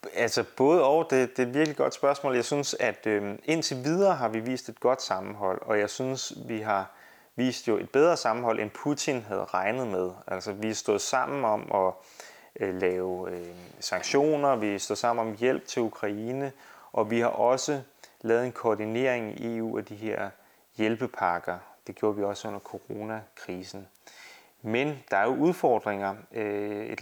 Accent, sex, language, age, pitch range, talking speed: native, male, Danish, 30-49, 100-125 Hz, 175 wpm